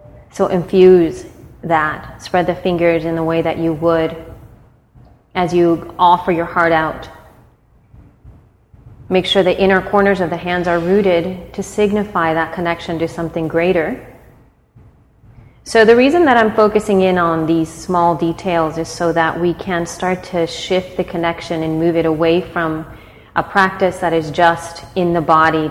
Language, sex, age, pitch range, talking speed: English, female, 30-49, 150-180 Hz, 160 wpm